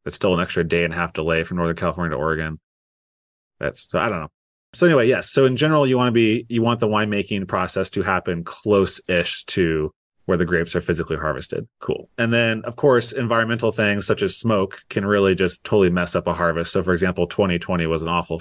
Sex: male